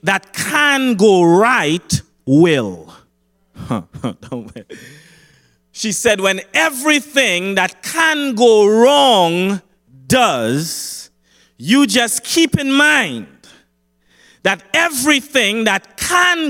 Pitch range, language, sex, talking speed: 200-285 Hz, English, male, 85 wpm